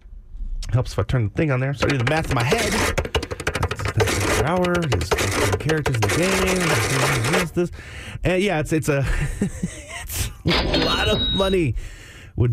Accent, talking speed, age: American, 185 wpm, 30-49